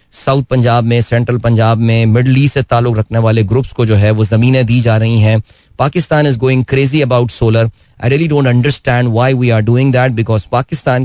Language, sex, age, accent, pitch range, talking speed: Hindi, male, 30-49, native, 115-150 Hz, 210 wpm